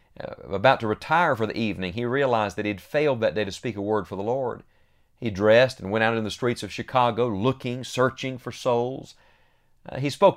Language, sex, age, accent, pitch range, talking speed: English, male, 40-59, American, 100-135 Hz, 215 wpm